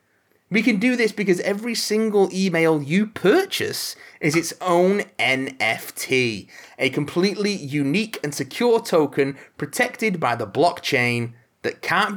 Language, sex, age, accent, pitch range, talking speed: English, male, 30-49, British, 125-205 Hz, 130 wpm